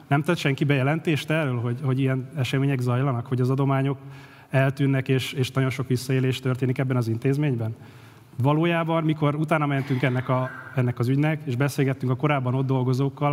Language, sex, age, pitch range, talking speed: Hungarian, male, 30-49, 130-150 Hz, 160 wpm